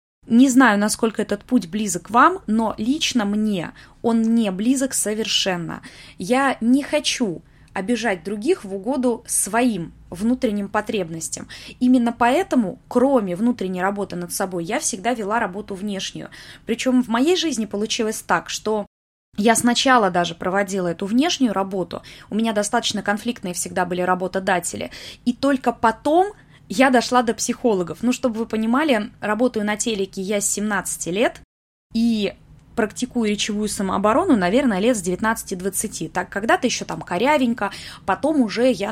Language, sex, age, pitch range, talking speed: Russian, female, 20-39, 195-245 Hz, 140 wpm